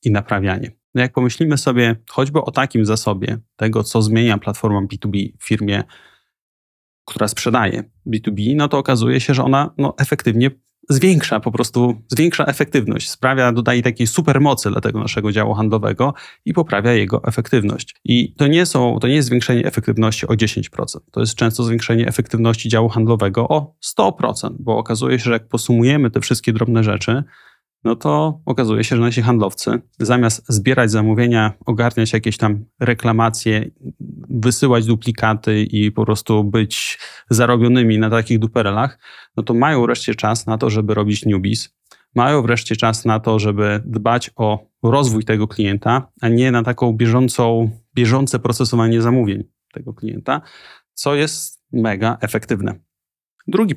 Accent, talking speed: native, 150 wpm